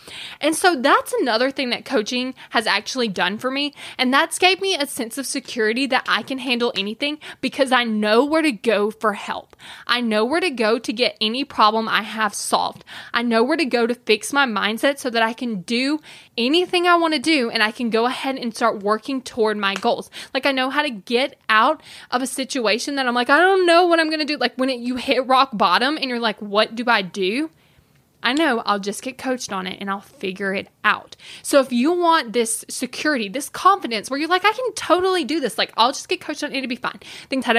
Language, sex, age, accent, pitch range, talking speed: English, female, 20-39, American, 220-290 Hz, 240 wpm